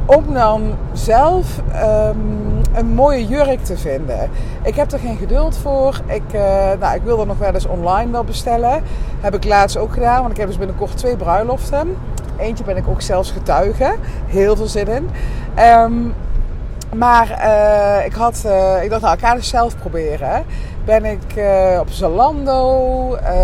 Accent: Dutch